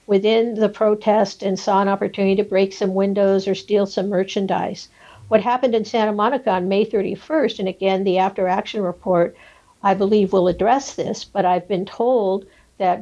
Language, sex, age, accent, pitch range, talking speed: English, female, 60-79, American, 185-210 Hz, 180 wpm